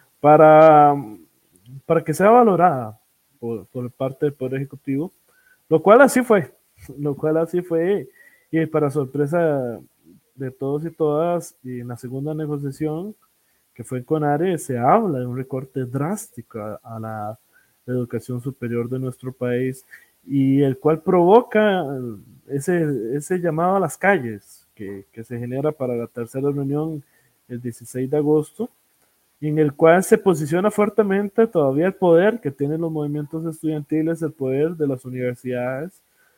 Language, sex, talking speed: Spanish, male, 150 wpm